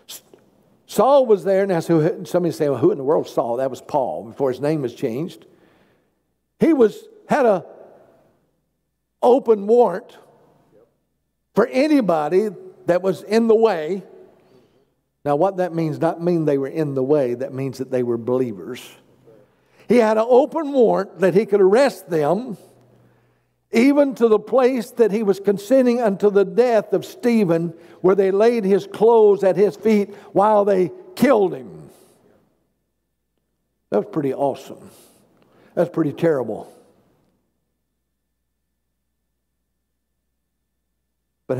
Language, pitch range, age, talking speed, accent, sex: English, 125-210 Hz, 60-79, 135 wpm, American, male